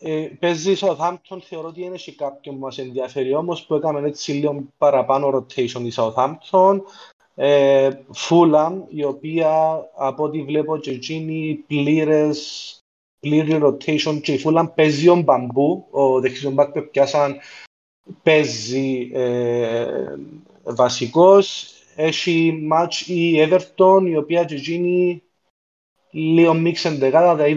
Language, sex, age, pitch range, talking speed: Greek, male, 30-49, 140-170 Hz, 115 wpm